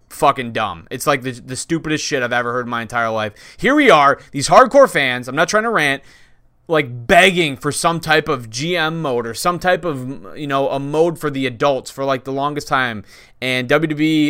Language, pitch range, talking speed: English, 125-160 Hz, 220 wpm